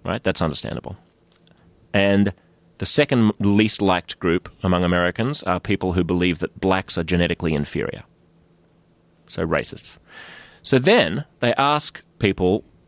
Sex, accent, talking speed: male, Australian, 125 wpm